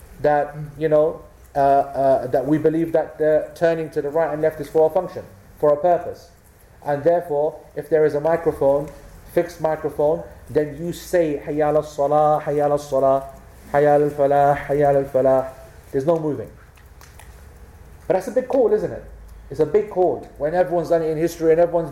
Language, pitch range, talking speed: English, 135-175 Hz, 170 wpm